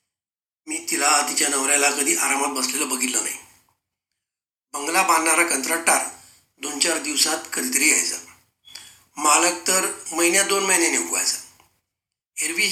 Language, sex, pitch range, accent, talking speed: Marathi, male, 120-190 Hz, native, 95 wpm